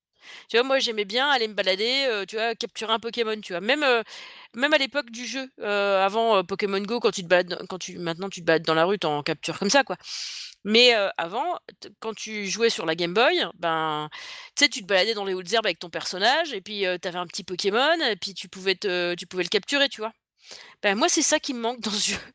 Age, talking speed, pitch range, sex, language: 30-49, 255 wpm, 185-245 Hz, female, French